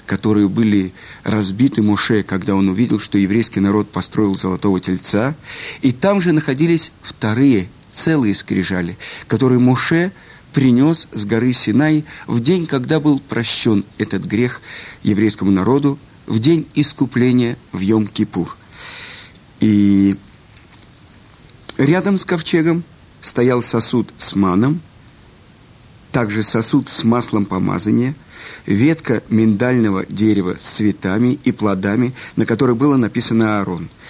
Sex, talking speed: male, 115 wpm